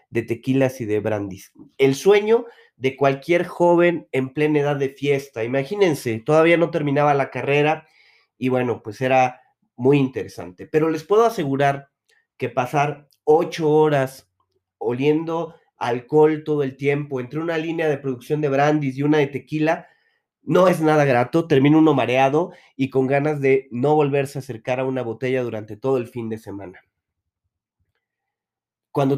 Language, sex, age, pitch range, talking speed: Spanish, male, 30-49, 125-155 Hz, 155 wpm